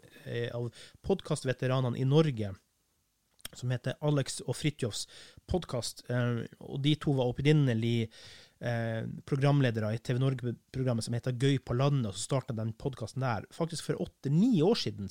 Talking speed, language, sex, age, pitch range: 150 wpm, English, male, 30-49, 120-155 Hz